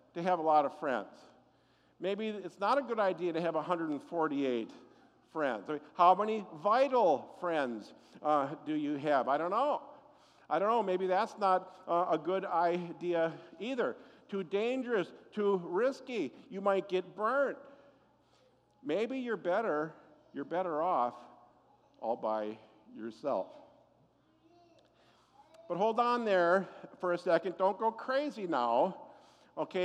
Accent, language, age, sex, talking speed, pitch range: American, English, 50-69, male, 135 wpm, 165-220 Hz